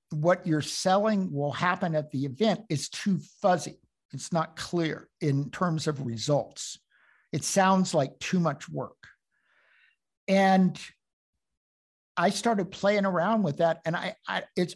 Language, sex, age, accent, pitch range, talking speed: English, male, 60-79, American, 150-200 Hz, 140 wpm